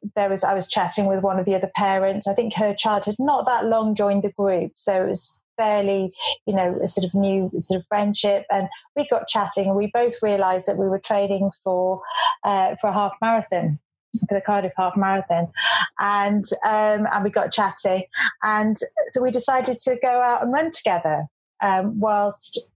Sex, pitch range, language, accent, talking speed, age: female, 195-230 Hz, English, British, 200 wpm, 30-49